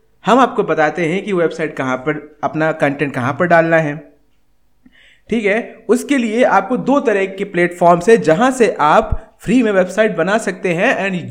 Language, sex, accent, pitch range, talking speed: Hindi, male, native, 155-210 Hz, 180 wpm